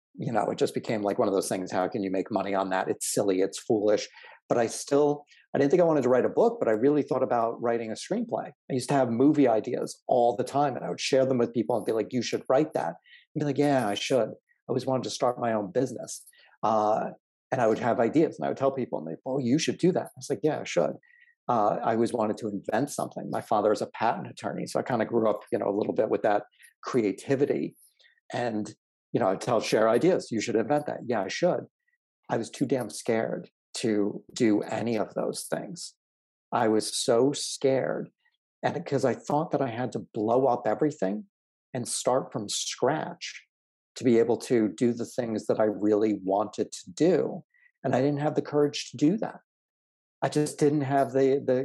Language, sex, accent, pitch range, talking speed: English, male, American, 110-145 Hz, 235 wpm